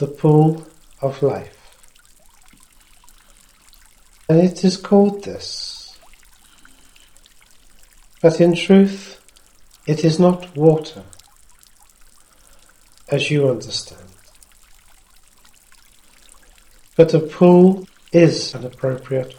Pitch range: 140-170 Hz